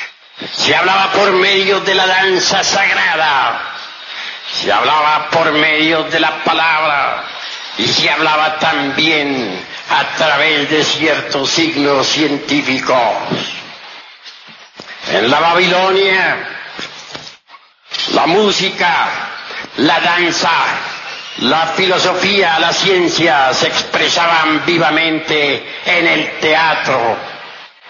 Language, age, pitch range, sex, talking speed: Spanish, 60-79, 155-195 Hz, male, 90 wpm